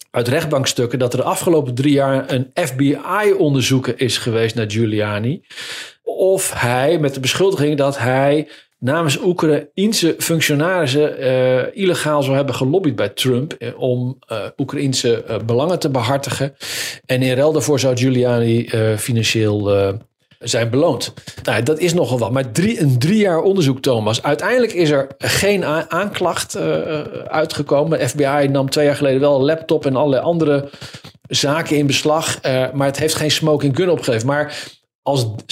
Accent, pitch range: Dutch, 125-155 Hz